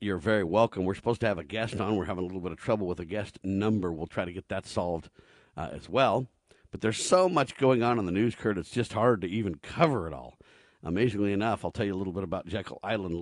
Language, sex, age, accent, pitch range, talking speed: English, male, 50-69, American, 95-120 Hz, 270 wpm